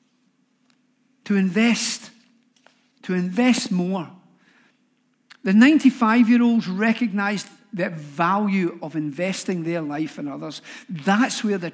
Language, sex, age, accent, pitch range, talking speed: English, male, 50-69, British, 195-255 Hz, 95 wpm